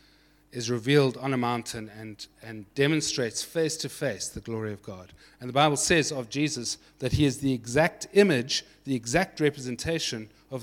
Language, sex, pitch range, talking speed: English, male, 120-150 Hz, 175 wpm